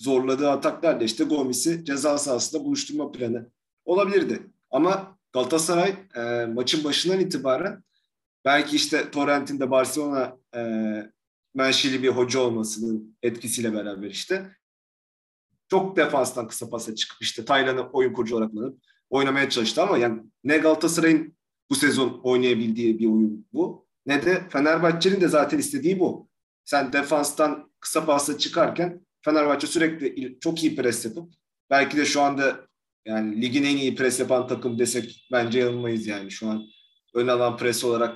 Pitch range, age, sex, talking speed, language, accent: 120-170 Hz, 40-59, male, 140 wpm, Turkish, native